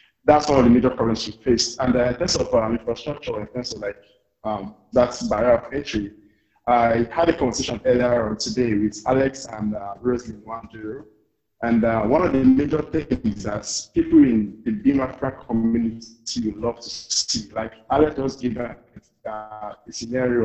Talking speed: 185 wpm